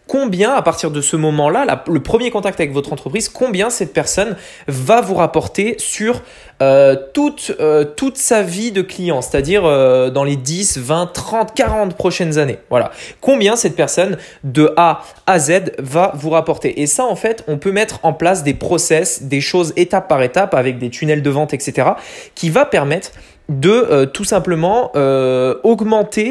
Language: French